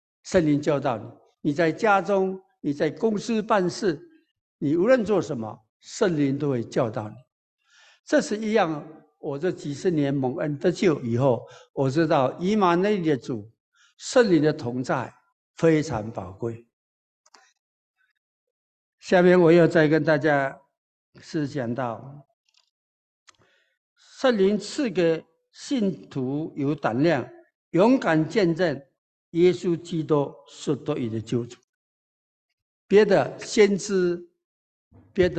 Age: 60-79